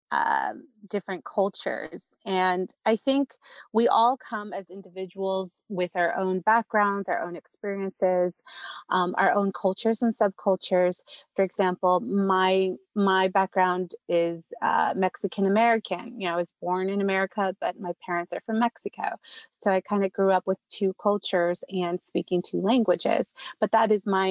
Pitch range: 180-210 Hz